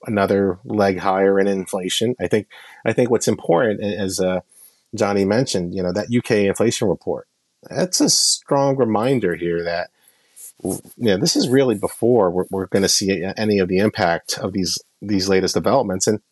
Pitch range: 95-110 Hz